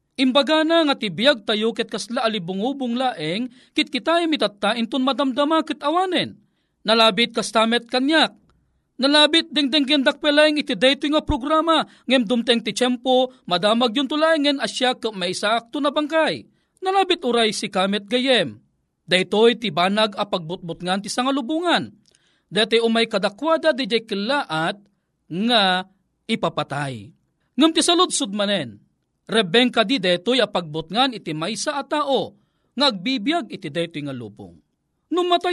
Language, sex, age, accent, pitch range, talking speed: Filipino, male, 40-59, native, 190-280 Hz, 145 wpm